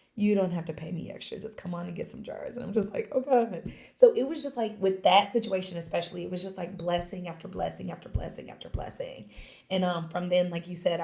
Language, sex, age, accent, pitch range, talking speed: English, female, 20-39, American, 170-195 Hz, 250 wpm